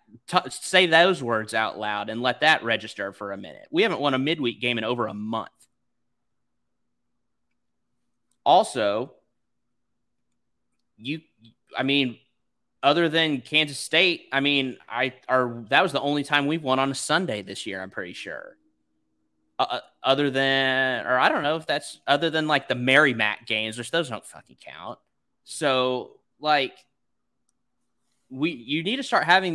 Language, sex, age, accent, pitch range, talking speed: English, male, 20-39, American, 130-175 Hz, 155 wpm